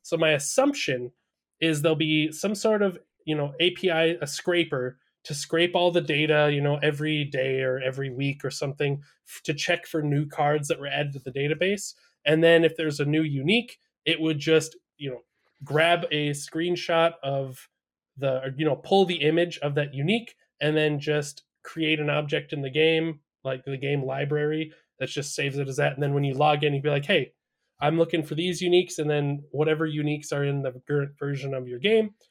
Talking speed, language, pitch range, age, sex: 210 wpm, English, 145-165 Hz, 20-39, male